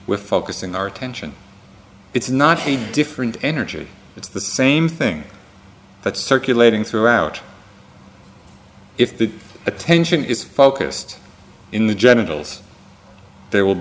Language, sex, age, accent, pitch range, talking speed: English, male, 40-59, American, 100-125 Hz, 115 wpm